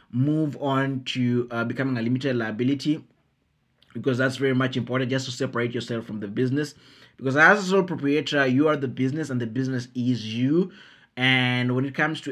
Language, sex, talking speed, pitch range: English, male, 190 wpm, 125-145 Hz